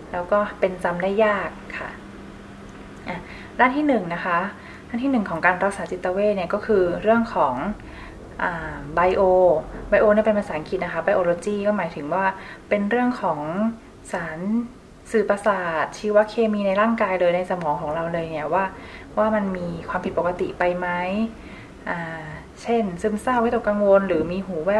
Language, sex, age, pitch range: Thai, female, 20-39, 175-210 Hz